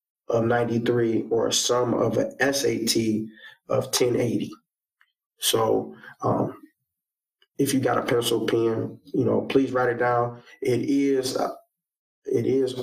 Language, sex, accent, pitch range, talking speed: English, male, American, 115-135 Hz, 130 wpm